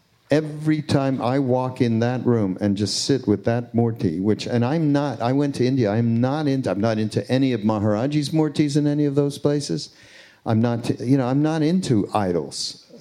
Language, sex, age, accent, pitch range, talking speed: English, male, 50-69, American, 105-135 Hz, 210 wpm